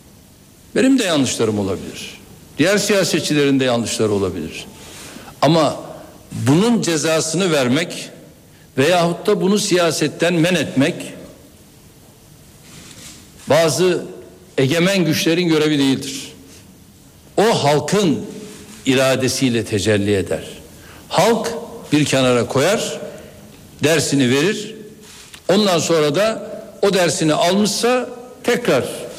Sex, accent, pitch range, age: male, native, 145-195 Hz, 60-79